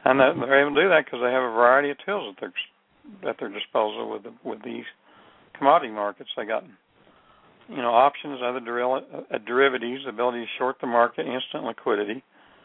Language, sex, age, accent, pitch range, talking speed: English, male, 60-79, American, 115-140 Hz, 180 wpm